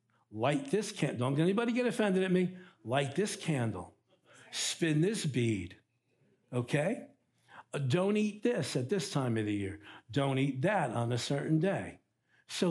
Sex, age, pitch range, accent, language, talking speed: male, 60-79, 140-190 Hz, American, English, 155 wpm